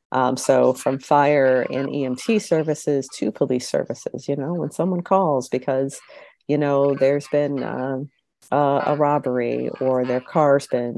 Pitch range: 130-155 Hz